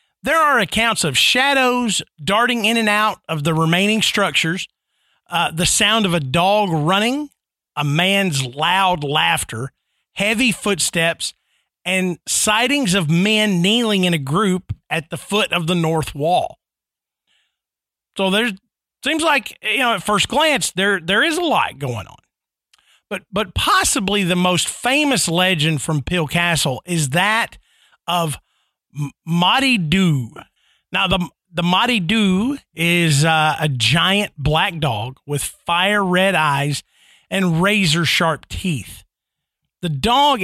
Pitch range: 160-215 Hz